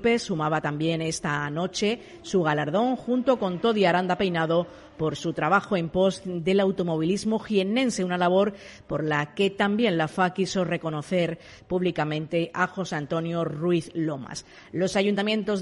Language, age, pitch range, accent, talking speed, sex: Spanish, 40-59, 160-200 Hz, Spanish, 140 wpm, female